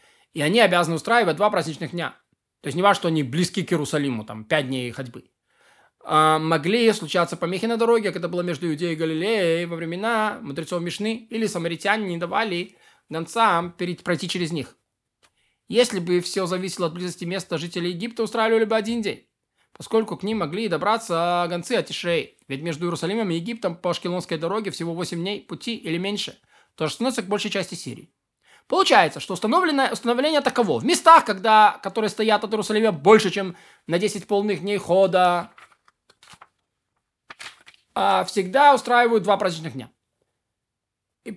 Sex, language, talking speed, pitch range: male, Russian, 160 wpm, 170-220 Hz